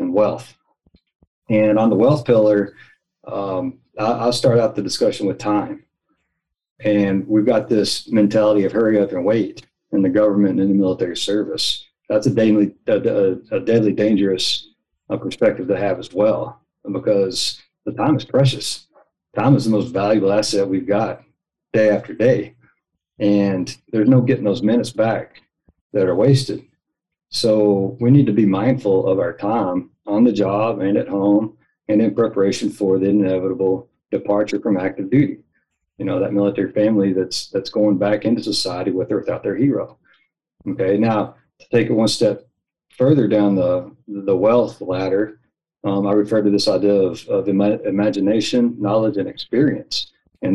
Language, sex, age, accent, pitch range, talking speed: English, male, 40-59, American, 95-110 Hz, 165 wpm